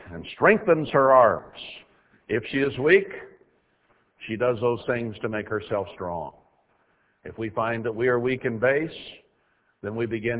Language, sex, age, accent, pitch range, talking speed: English, male, 60-79, American, 100-130 Hz, 160 wpm